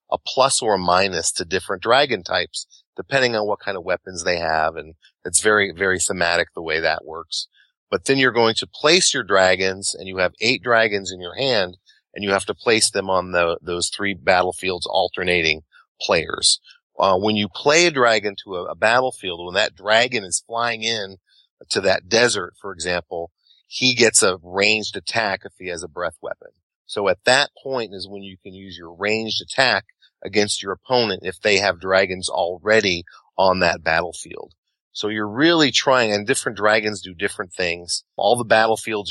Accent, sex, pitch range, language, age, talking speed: American, male, 95-110 Hz, English, 30-49, 190 wpm